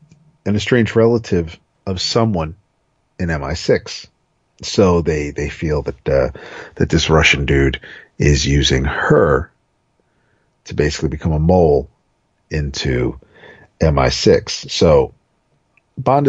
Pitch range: 80-120 Hz